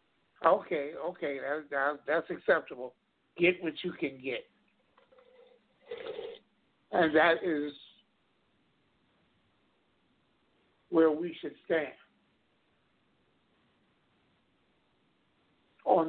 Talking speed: 65 wpm